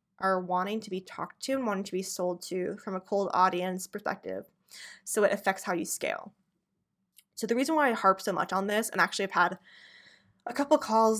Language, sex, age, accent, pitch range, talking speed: English, female, 20-39, American, 185-215 Hz, 215 wpm